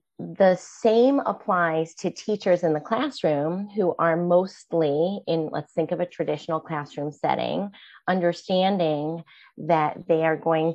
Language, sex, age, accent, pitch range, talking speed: English, female, 30-49, American, 155-175 Hz, 135 wpm